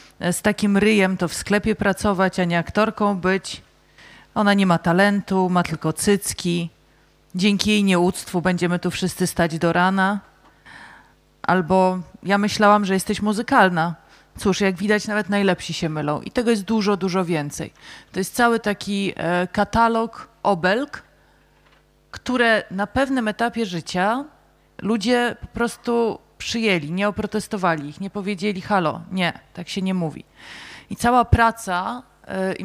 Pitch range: 185-225 Hz